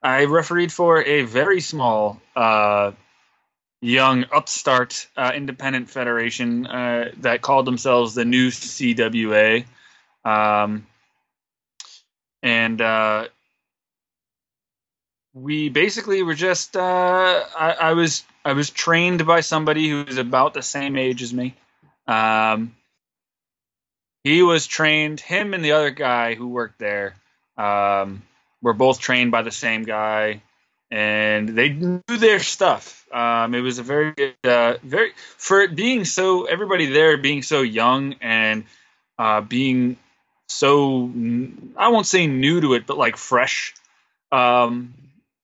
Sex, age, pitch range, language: male, 20-39, 115-155 Hz, English